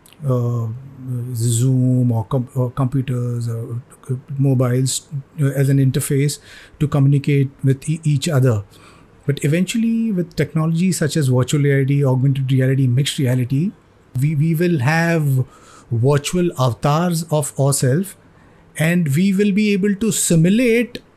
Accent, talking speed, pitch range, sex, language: Indian, 120 wpm, 140-195 Hz, male, English